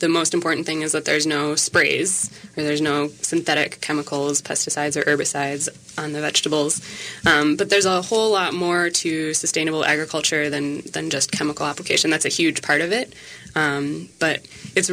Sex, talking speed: female, 175 wpm